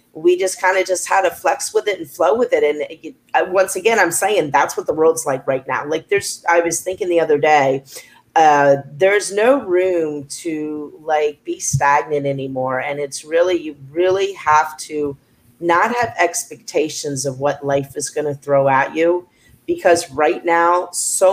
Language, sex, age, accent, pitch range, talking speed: English, female, 40-59, American, 150-195 Hz, 185 wpm